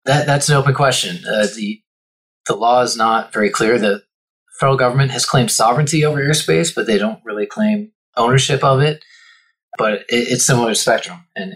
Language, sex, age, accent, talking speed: English, male, 30-49, American, 185 wpm